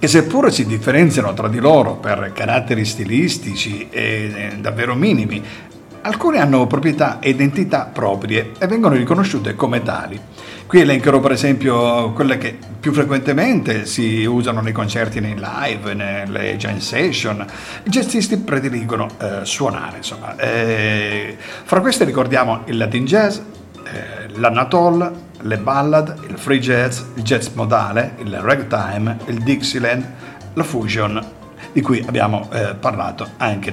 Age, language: 50-69, Italian